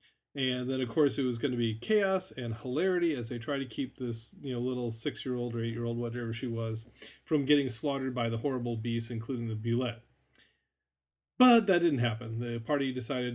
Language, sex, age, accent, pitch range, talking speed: English, male, 30-49, American, 115-135 Hz, 200 wpm